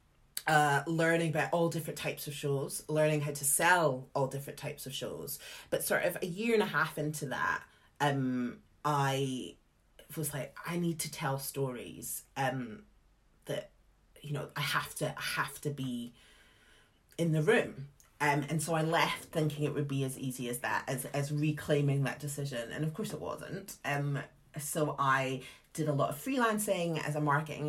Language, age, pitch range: English, 30-49, 135-165 Hz